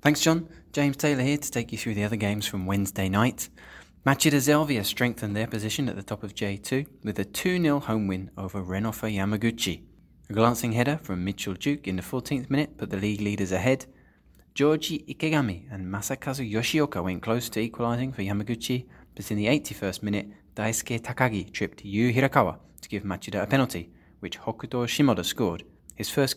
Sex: male